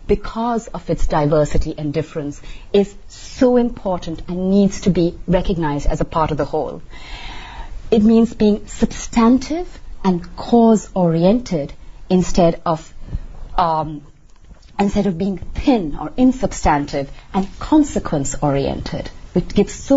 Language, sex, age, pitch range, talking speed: English, female, 30-49, 160-215 Hz, 120 wpm